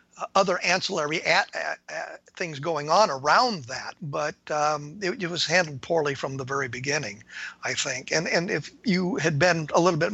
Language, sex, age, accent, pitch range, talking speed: English, male, 50-69, American, 150-180 Hz, 190 wpm